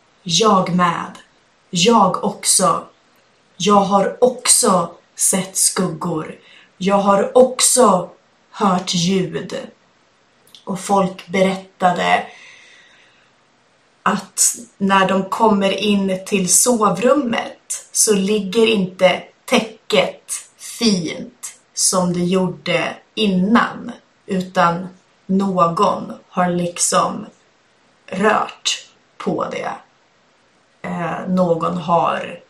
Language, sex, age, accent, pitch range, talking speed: Swedish, female, 30-49, native, 185-255 Hz, 80 wpm